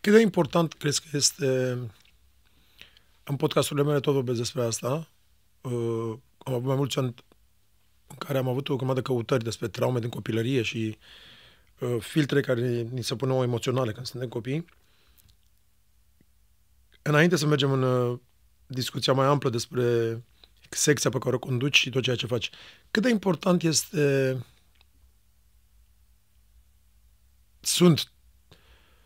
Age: 30-49